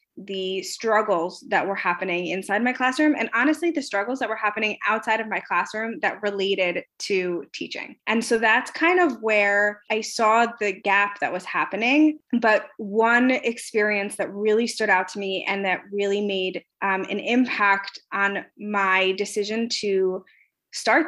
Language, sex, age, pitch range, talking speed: English, female, 20-39, 195-235 Hz, 160 wpm